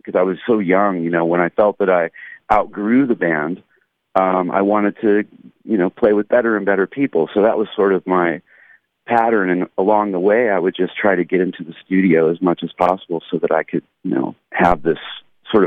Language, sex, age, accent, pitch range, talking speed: English, male, 40-59, American, 85-95 Hz, 230 wpm